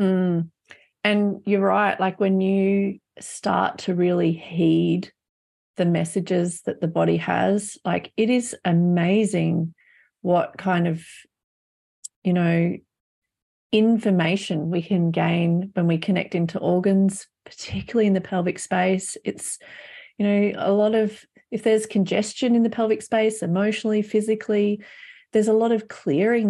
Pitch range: 175-210 Hz